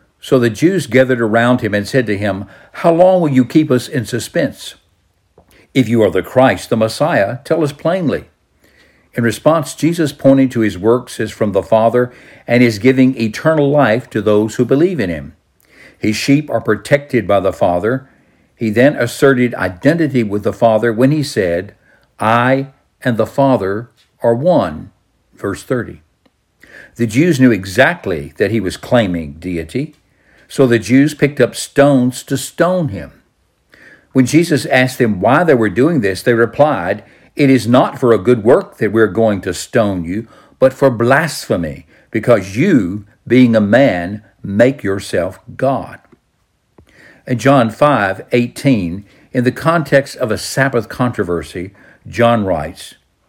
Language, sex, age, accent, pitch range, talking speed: English, male, 60-79, American, 110-140 Hz, 160 wpm